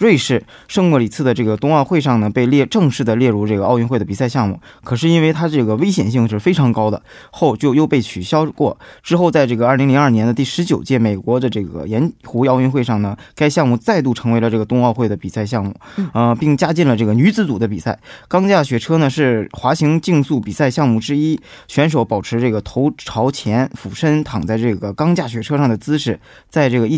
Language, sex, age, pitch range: Korean, male, 20-39, 115-150 Hz